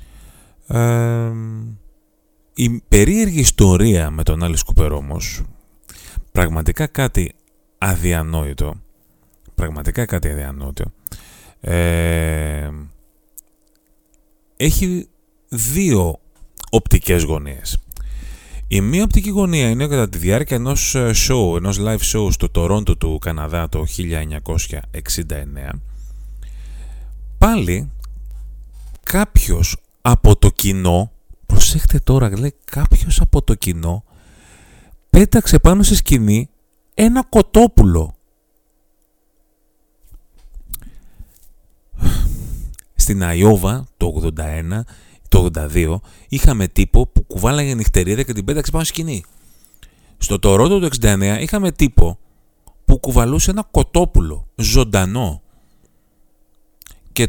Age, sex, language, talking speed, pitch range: 30-49, male, Greek, 90 wpm, 80-115 Hz